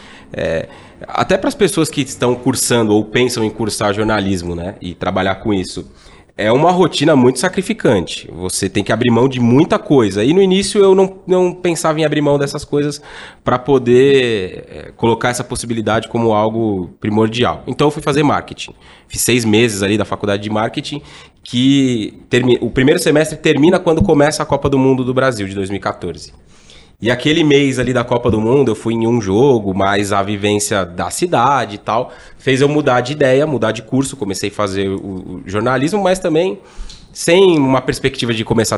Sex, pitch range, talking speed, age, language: male, 100-145 Hz, 185 wpm, 20-39, Portuguese